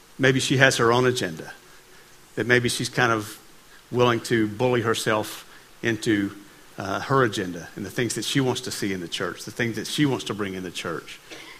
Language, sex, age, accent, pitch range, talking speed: English, male, 50-69, American, 115-150 Hz, 205 wpm